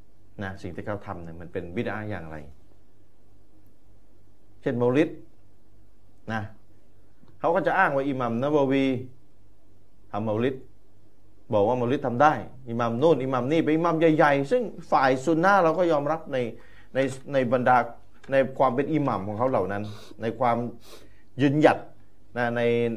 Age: 30-49